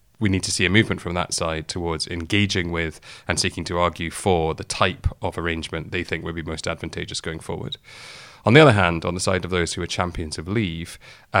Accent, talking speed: British, 225 wpm